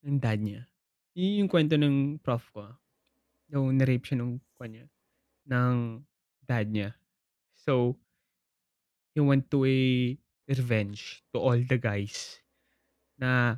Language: Filipino